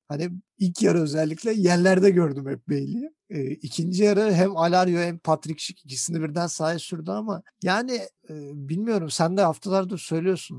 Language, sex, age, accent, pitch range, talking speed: Turkish, male, 50-69, native, 140-180 Hz, 155 wpm